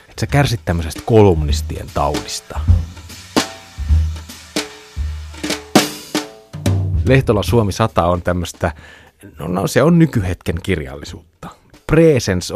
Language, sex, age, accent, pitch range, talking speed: Finnish, male, 30-49, native, 85-115 Hz, 75 wpm